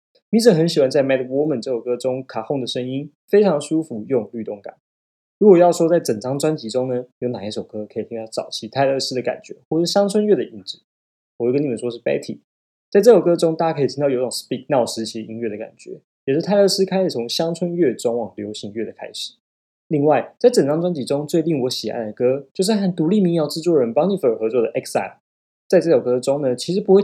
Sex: male